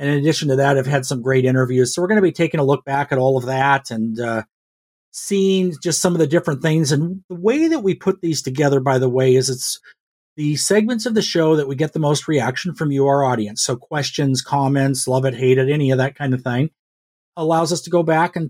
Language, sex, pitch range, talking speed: English, male, 130-160 Hz, 255 wpm